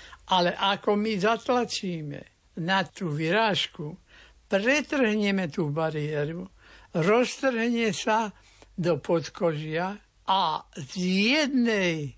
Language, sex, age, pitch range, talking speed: Slovak, male, 60-79, 170-215 Hz, 85 wpm